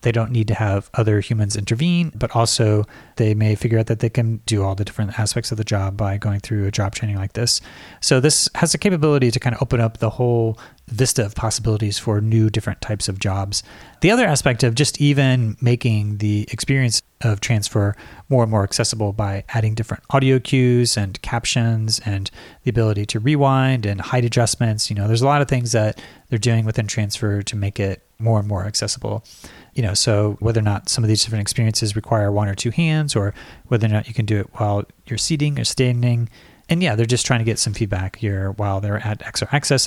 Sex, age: male, 30-49